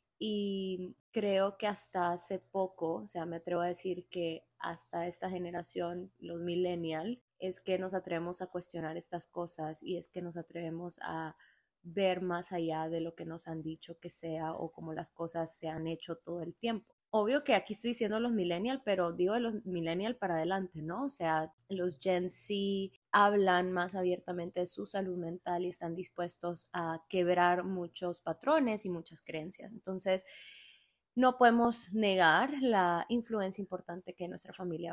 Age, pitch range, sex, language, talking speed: 20-39, 170-200 Hz, female, Spanish, 170 wpm